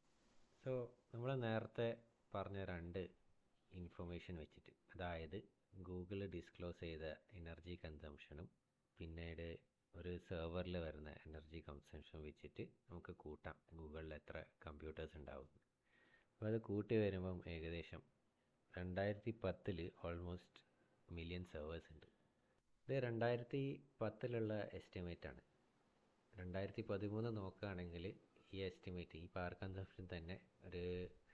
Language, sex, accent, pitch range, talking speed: Malayalam, male, native, 85-105 Hz, 95 wpm